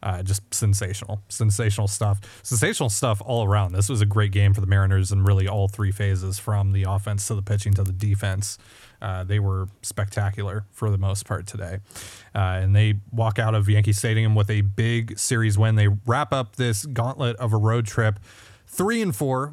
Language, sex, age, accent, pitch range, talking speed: English, male, 30-49, American, 100-125 Hz, 200 wpm